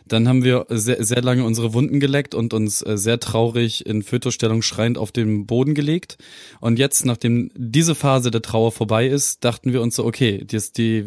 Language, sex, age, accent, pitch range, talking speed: German, male, 20-39, German, 105-125 Hz, 190 wpm